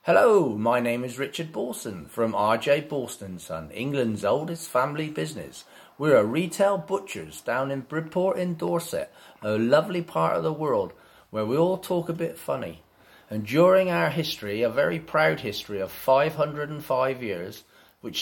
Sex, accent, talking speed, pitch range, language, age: male, British, 155 wpm, 115-145 Hz, English, 40-59